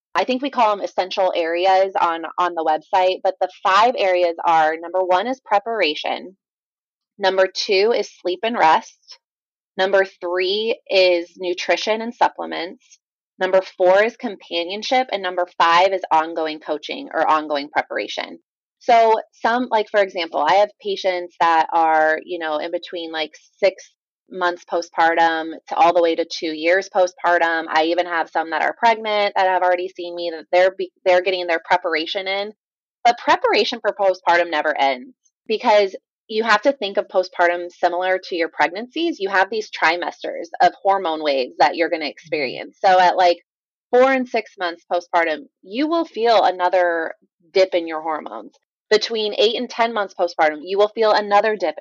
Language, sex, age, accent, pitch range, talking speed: English, female, 20-39, American, 170-220 Hz, 170 wpm